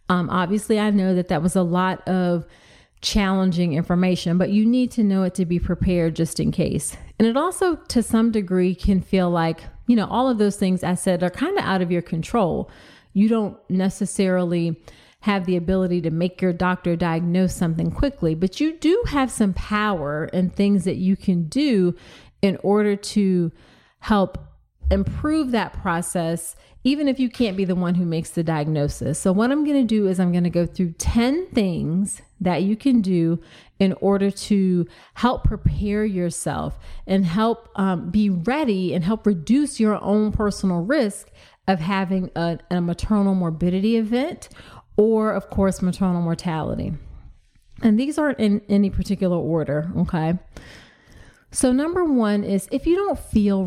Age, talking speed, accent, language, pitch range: 30-49, 170 wpm, American, English, 175-215 Hz